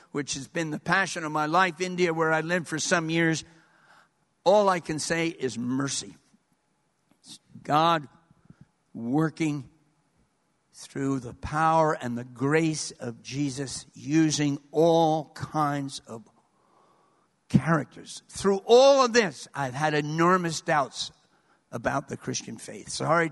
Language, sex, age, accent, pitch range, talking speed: English, male, 60-79, American, 145-195 Hz, 125 wpm